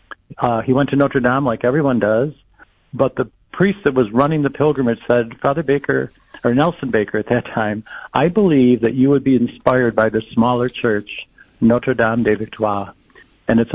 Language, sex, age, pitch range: English, male, 60-79, 115-135 Hz